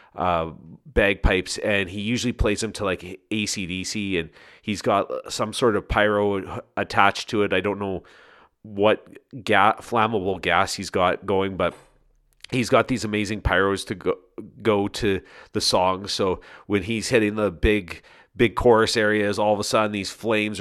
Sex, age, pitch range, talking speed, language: male, 40-59, 95-110 Hz, 165 wpm, English